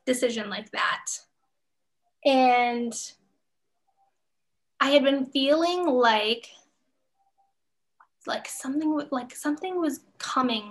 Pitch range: 230-285 Hz